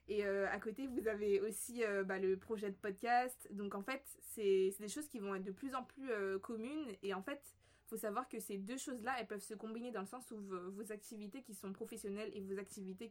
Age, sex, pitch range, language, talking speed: 20-39, female, 195-230 Hz, English, 255 wpm